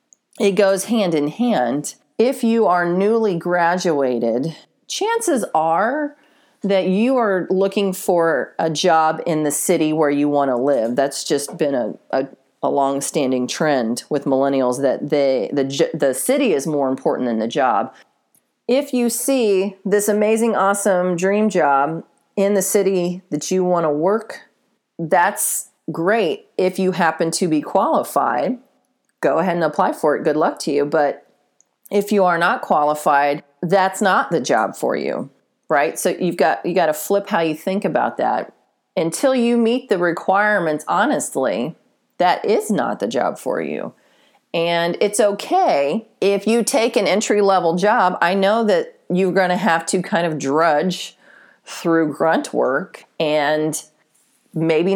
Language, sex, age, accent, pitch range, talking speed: English, female, 40-59, American, 155-210 Hz, 160 wpm